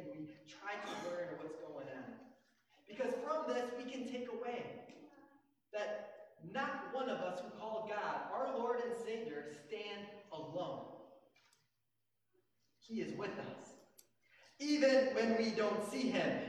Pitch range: 205-265 Hz